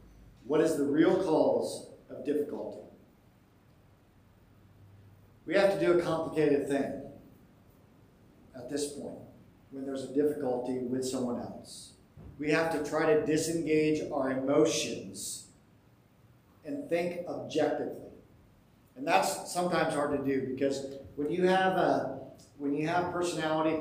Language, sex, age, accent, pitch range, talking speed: English, male, 50-69, American, 130-175 Hz, 120 wpm